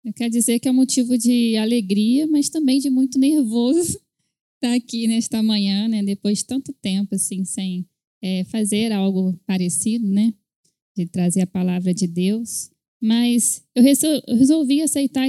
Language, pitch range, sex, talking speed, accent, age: Portuguese, 205-265 Hz, female, 155 wpm, Brazilian, 10-29